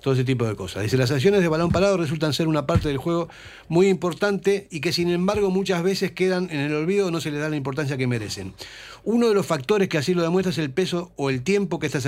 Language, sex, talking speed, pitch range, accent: Spanish, male, 270 wpm, 135-175 Hz, Argentinian